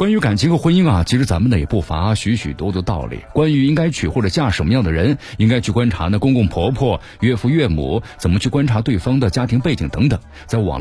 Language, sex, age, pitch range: Chinese, male, 50-69, 95-130 Hz